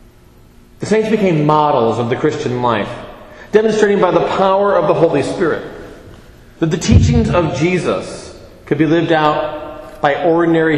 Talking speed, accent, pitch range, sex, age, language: 145 wpm, American, 135-185 Hz, male, 40-59, English